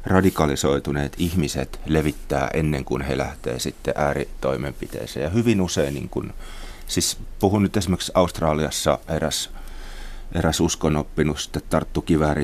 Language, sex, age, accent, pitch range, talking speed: Finnish, male, 30-49, native, 75-90 Hz, 110 wpm